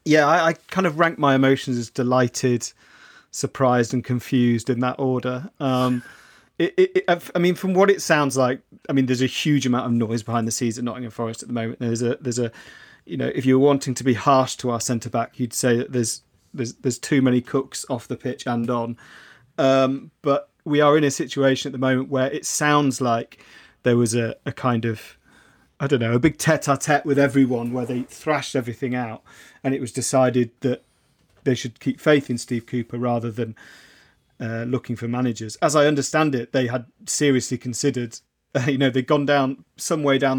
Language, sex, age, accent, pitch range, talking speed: English, male, 30-49, British, 120-140 Hz, 210 wpm